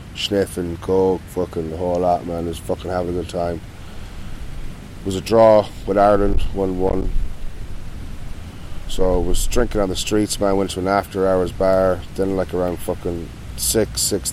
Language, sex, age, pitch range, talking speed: English, male, 20-39, 85-105 Hz, 170 wpm